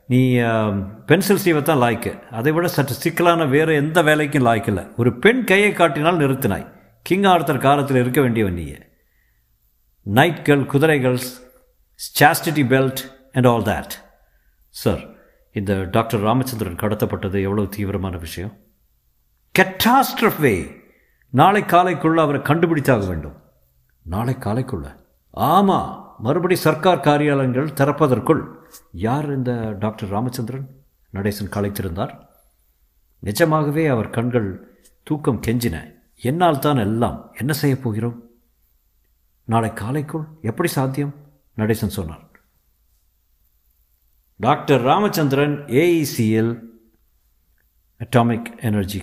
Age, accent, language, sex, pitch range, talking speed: 50-69, native, Tamil, male, 100-145 Hz, 90 wpm